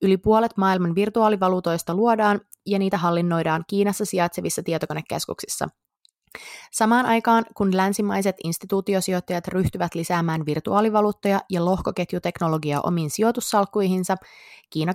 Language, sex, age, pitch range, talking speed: Finnish, female, 20-39, 175-215 Hz, 95 wpm